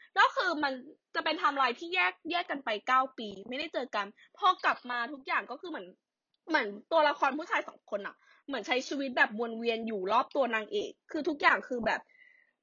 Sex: female